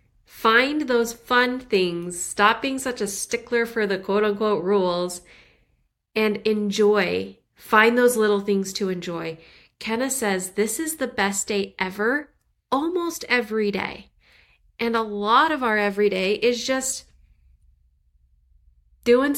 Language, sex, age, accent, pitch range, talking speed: English, female, 30-49, American, 195-265 Hz, 135 wpm